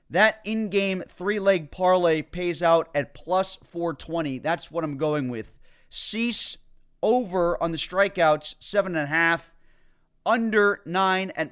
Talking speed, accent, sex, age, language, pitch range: 120 wpm, American, male, 30-49, English, 150-180 Hz